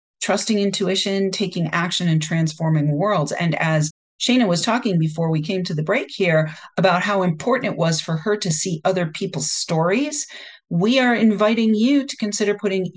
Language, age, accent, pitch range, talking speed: English, 40-59, American, 155-205 Hz, 175 wpm